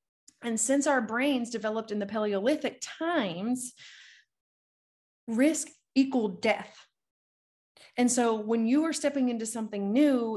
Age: 30-49